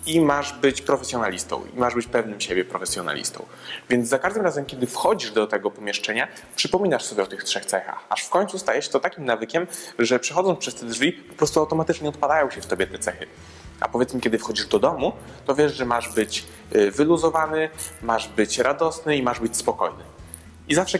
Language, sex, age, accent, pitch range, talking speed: Polish, male, 20-39, native, 110-145 Hz, 190 wpm